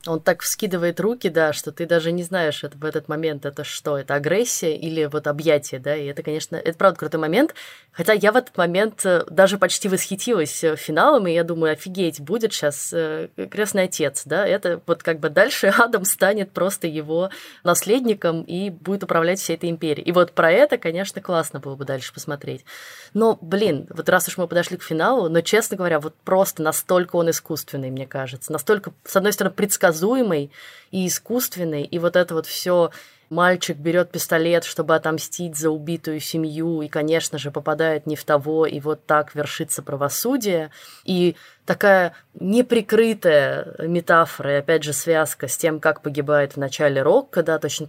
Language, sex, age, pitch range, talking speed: Russian, female, 20-39, 150-190 Hz, 175 wpm